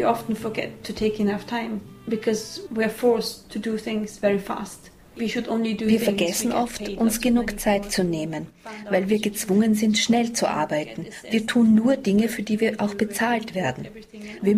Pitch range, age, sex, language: 200-230 Hz, 40-59, female, English